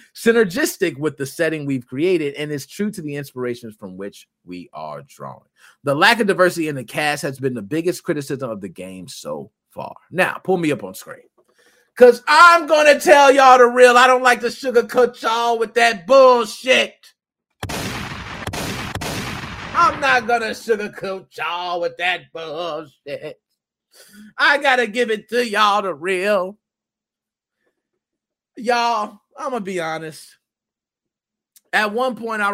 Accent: American